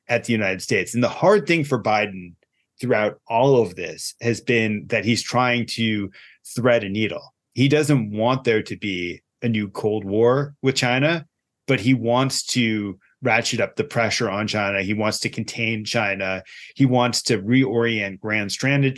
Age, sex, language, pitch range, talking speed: 30-49, male, English, 105-130 Hz, 175 wpm